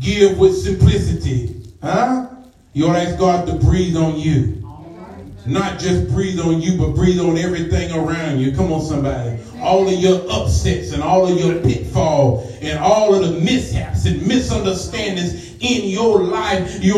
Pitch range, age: 175-275 Hz, 40-59